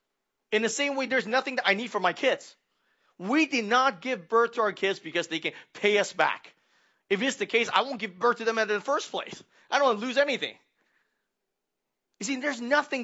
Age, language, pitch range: 30-49, English, 195-255 Hz